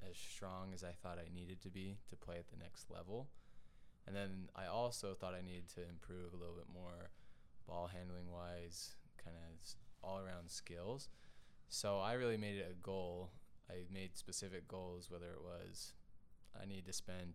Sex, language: male, English